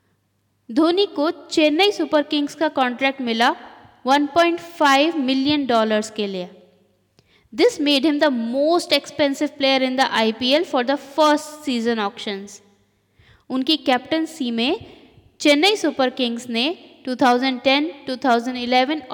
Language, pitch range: Hindi, 240-310 Hz